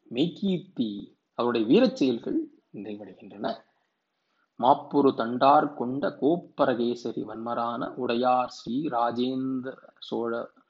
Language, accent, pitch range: Tamil, native, 110-145 Hz